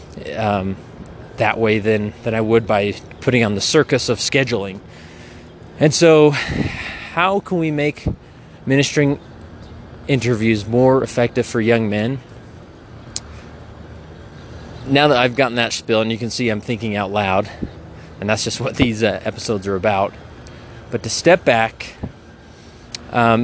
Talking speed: 140 wpm